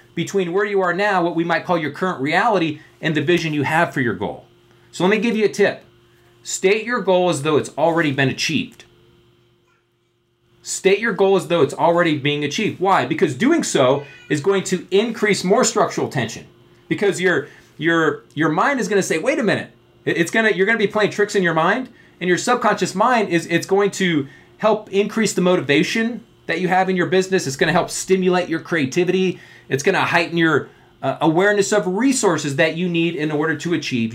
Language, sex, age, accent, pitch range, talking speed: English, male, 30-49, American, 140-200 Hz, 215 wpm